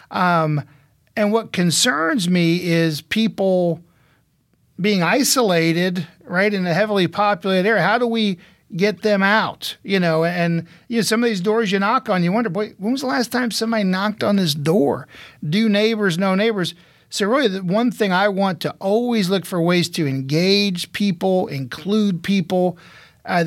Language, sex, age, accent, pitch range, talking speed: English, male, 50-69, American, 170-205 Hz, 175 wpm